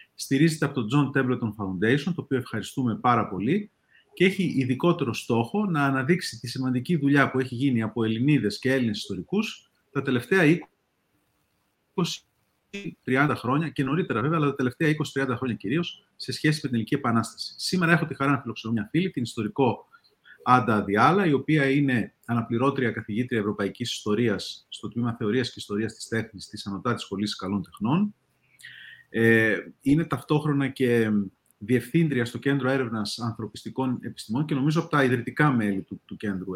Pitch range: 110-150 Hz